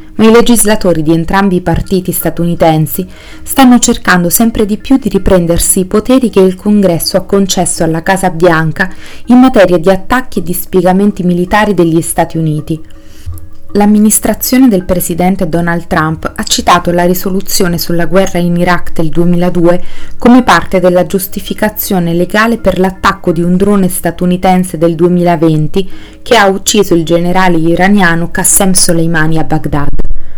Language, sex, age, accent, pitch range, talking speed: Italian, female, 30-49, native, 170-195 Hz, 145 wpm